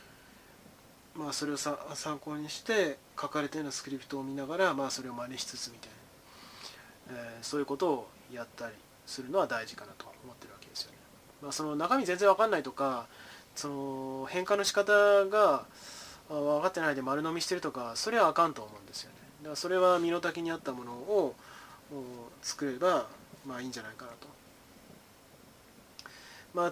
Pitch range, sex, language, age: 135-170 Hz, male, Japanese, 20-39